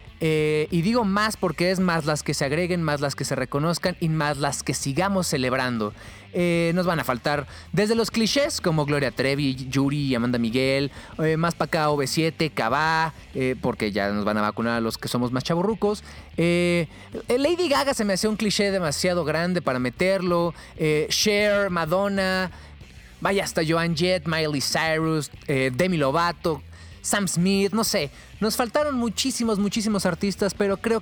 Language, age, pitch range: Spanish, 30-49, 140-195 Hz